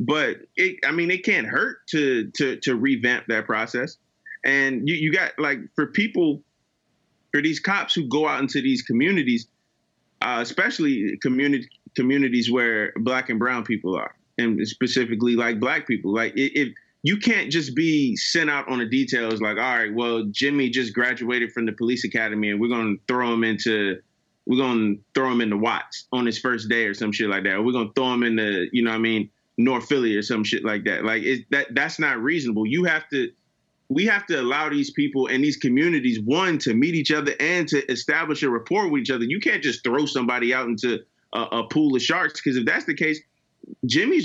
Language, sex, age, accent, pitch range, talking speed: English, male, 20-39, American, 115-180 Hz, 210 wpm